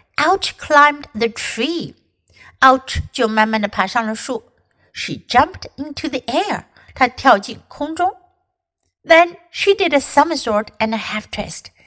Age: 60-79